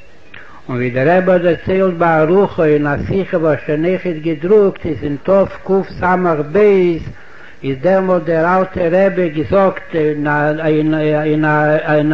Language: Hebrew